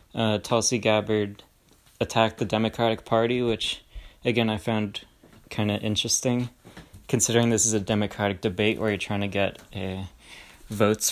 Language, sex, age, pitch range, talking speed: English, male, 20-39, 105-120 Hz, 145 wpm